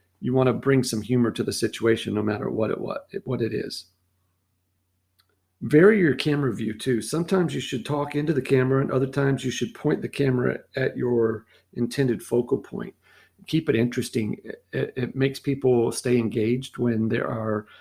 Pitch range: 110-130 Hz